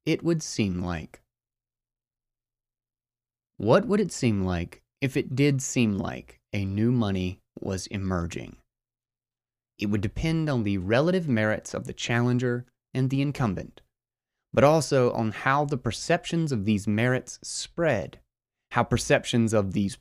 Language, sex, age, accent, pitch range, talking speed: English, male, 30-49, American, 105-130 Hz, 140 wpm